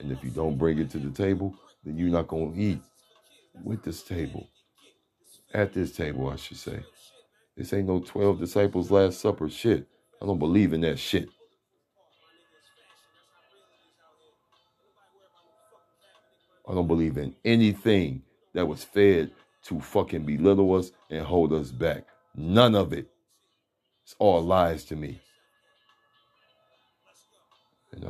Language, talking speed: English, 135 wpm